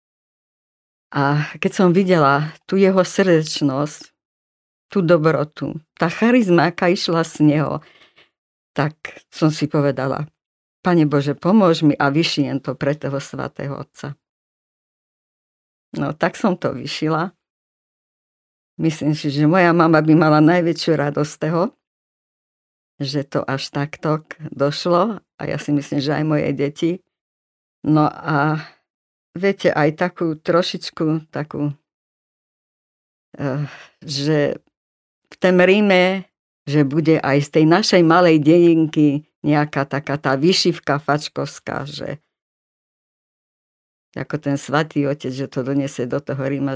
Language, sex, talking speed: Slovak, female, 120 wpm